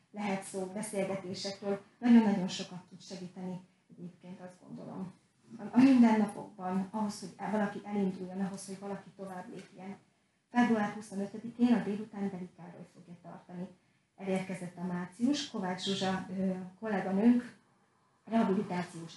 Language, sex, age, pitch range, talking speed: Hungarian, female, 30-49, 185-215 Hz, 120 wpm